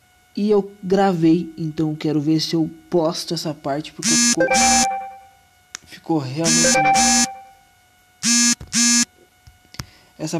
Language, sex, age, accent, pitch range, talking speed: Portuguese, male, 20-39, Brazilian, 155-195 Hz, 90 wpm